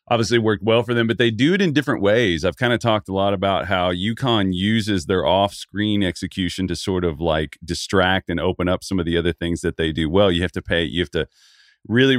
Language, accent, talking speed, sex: English, American, 250 wpm, male